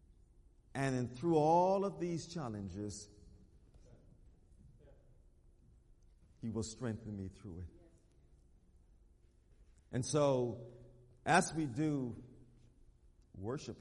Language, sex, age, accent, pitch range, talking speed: English, male, 50-69, American, 90-125 Hz, 85 wpm